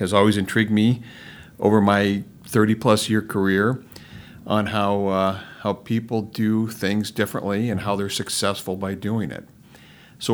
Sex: male